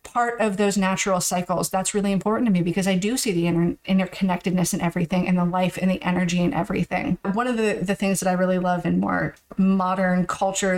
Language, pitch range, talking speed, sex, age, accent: English, 175-195 Hz, 215 wpm, female, 30-49, American